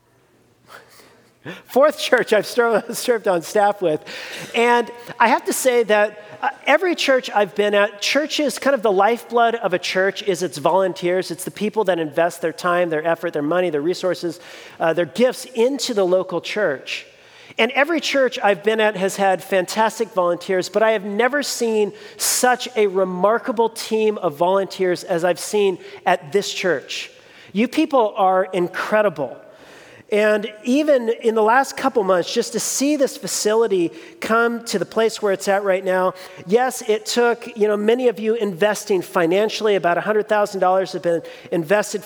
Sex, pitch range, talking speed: male, 185-235 Hz, 165 wpm